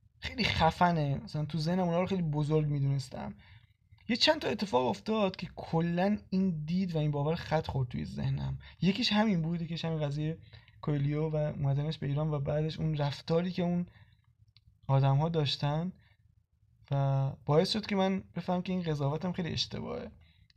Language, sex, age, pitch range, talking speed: Persian, male, 20-39, 140-180 Hz, 165 wpm